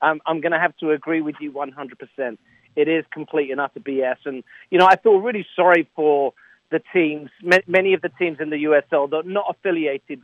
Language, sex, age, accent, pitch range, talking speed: English, male, 50-69, British, 145-175 Hz, 210 wpm